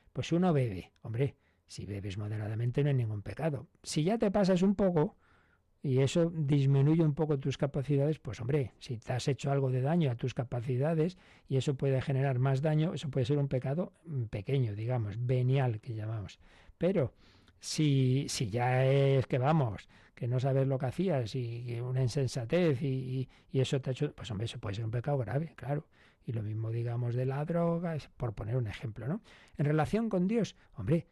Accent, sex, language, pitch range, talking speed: Spanish, male, Spanish, 120-155 Hz, 195 wpm